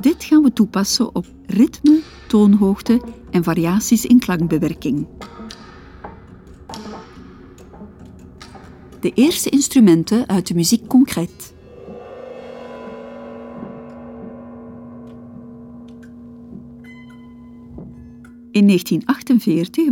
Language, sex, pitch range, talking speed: English, female, 170-240 Hz, 60 wpm